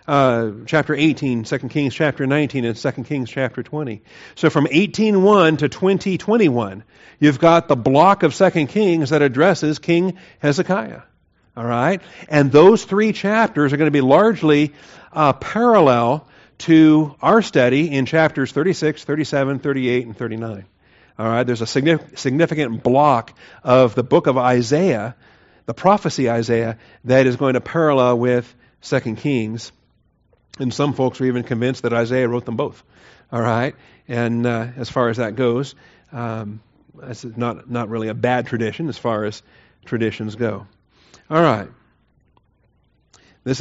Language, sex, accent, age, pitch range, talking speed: English, male, American, 50-69, 120-155 Hz, 150 wpm